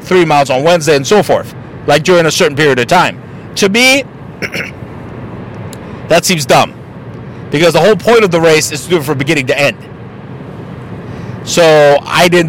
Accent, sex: American, male